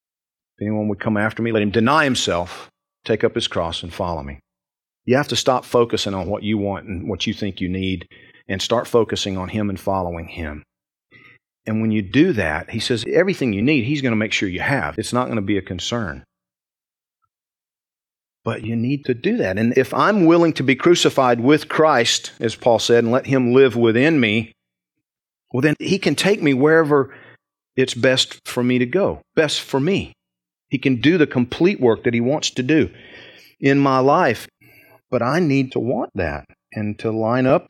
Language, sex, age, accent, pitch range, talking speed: English, male, 40-59, American, 105-145 Hz, 205 wpm